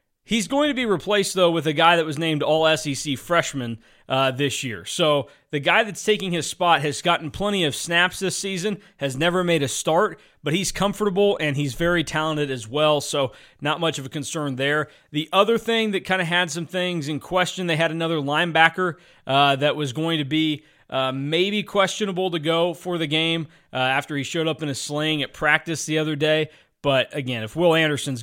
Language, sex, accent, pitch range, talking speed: English, male, American, 140-175 Hz, 210 wpm